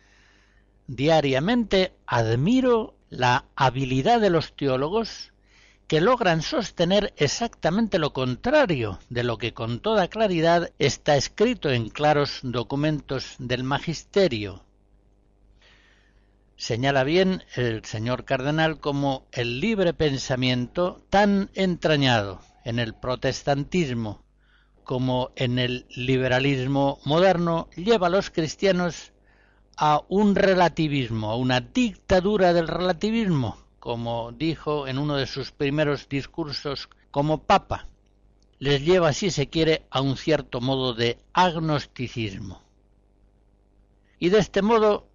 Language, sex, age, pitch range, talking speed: Spanish, male, 60-79, 115-170 Hz, 110 wpm